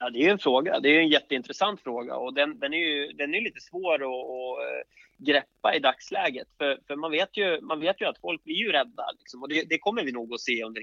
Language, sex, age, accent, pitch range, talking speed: Swedish, male, 20-39, native, 130-190 Hz, 260 wpm